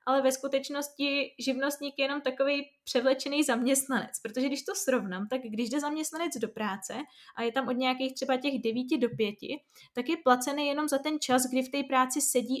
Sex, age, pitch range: female, 20-39, 245-275 Hz